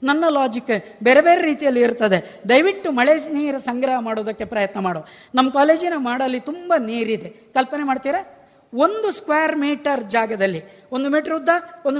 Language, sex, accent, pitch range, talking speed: Kannada, female, native, 230-295 Hz, 140 wpm